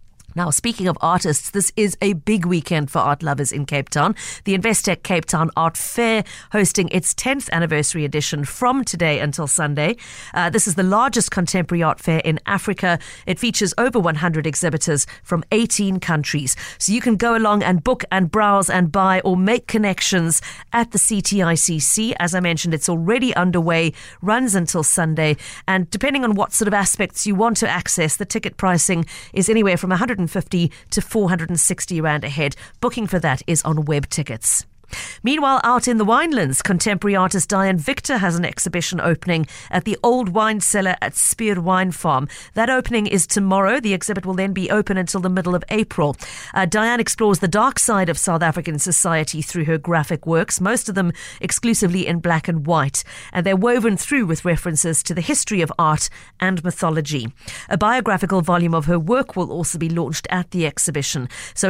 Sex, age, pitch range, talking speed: female, 40-59, 165-210 Hz, 185 wpm